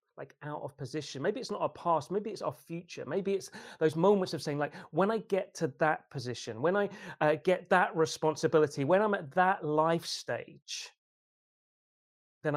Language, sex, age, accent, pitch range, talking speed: English, male, 30-49, British, 135-175 Hz, 185 wpm